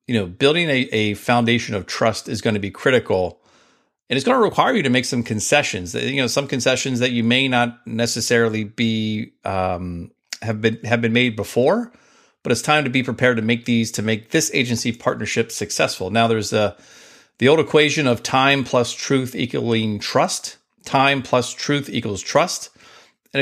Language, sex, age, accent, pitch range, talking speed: English, male, 40-59, American, 115-135 Hz, 185 wpm